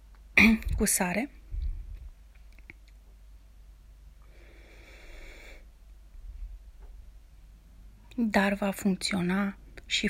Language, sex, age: Romanian, female, 30-49